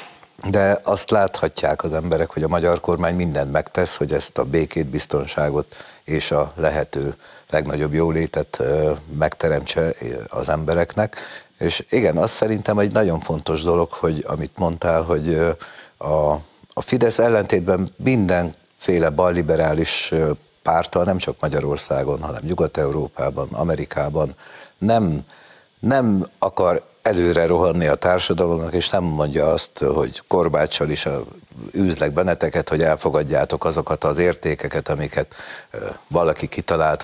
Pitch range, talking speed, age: 75-90 Hz, 120 wpm, 60-79